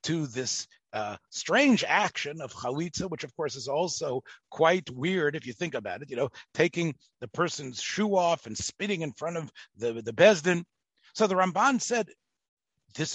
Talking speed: 180 wpm